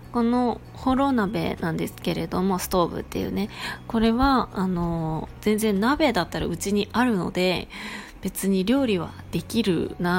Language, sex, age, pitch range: Japanese, female, 20-39, 170-215 Hz